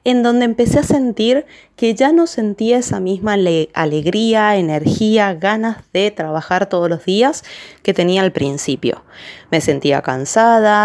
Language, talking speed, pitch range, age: Spanish, 145 wpm, 175-230 Hz, 20-39